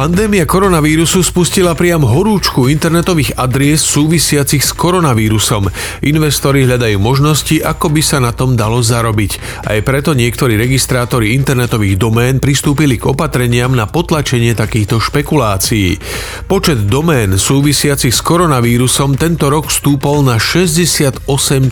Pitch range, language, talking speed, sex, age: 120-150 Hz, Slovak, 120 wpm, male, 40-59